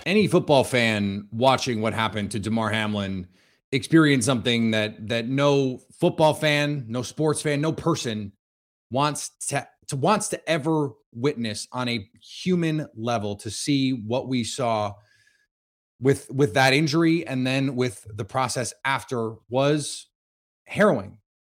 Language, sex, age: English, male, 30-49